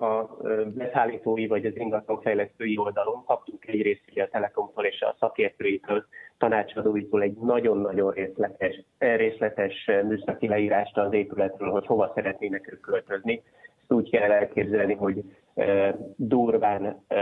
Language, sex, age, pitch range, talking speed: Hungarian, male, 30-49, 105-135 Hz, 120 wpm